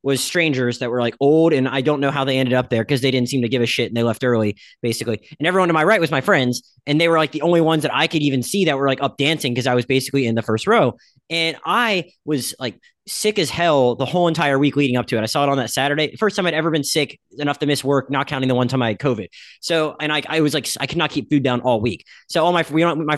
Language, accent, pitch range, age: English, American, 130-160 Hz, 20-39